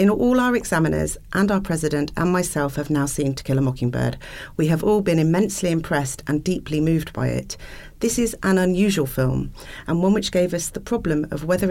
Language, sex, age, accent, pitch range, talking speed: English, female, 40-59, British, 140-170 Hz, 210 wpm